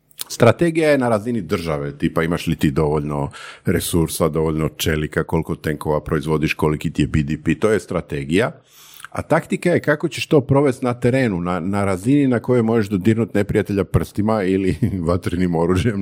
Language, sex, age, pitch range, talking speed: Croatian, male, 50-69, 85-120 Hz, 165 wpm